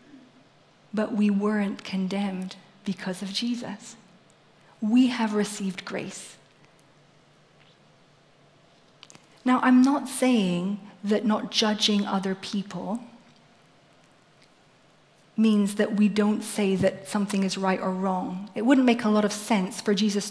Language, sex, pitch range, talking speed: English, female, 190-230 Hz, 120 wpm